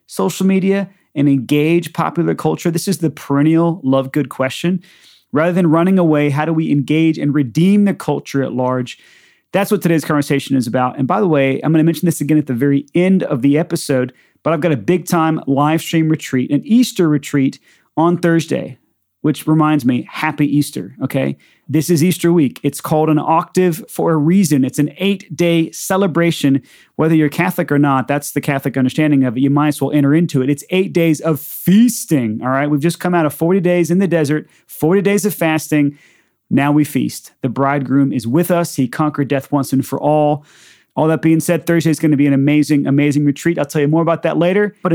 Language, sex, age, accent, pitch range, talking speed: English, male, 30-49, American, 140-170 Hz, 210 wpm